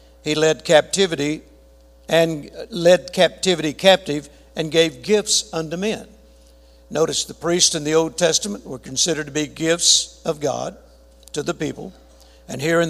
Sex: male